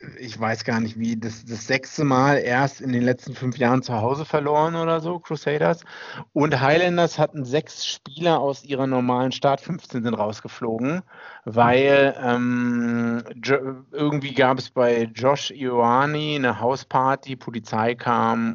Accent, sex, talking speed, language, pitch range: German, male, 145 wpm, German, 110-135 Hz